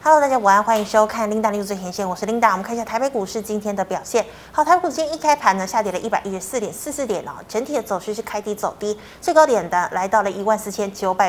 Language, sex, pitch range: Chinese, female, 200-265 Hz